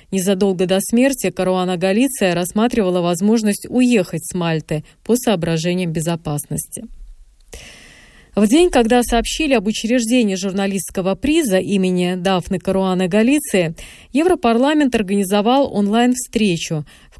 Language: Russian